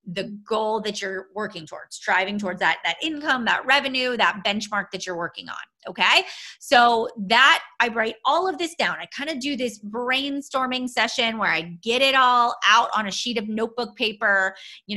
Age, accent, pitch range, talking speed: 30-49, American, 185-240 Hz, 195 wpm